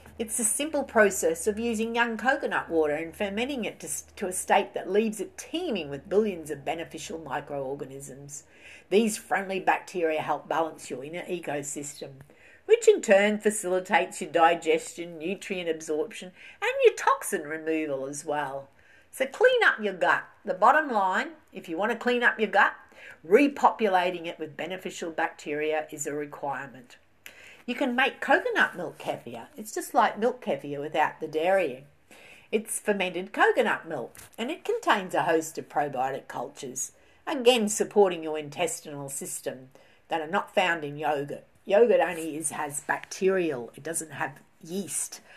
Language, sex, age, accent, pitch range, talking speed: English, female, 50-69, Australian, 155-215 Hz, 155 wpm